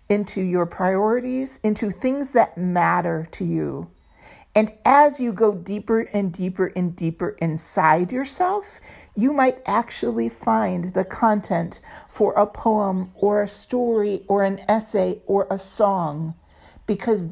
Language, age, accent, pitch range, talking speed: English, 50-69, American, 170-225 Hz, 135 wpm